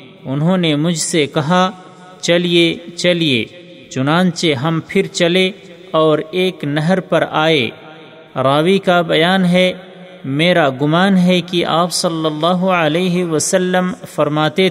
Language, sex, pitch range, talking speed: Urdu, male, 155-185 Hz, 120 wpm